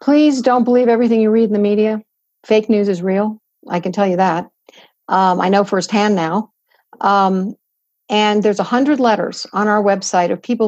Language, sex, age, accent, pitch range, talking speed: English, female, 50-69, American, 195-250 Hz, 185 wpm